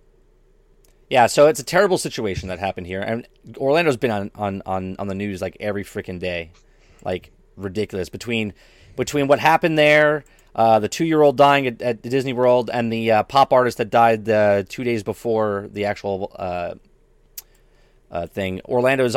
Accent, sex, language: American, male, English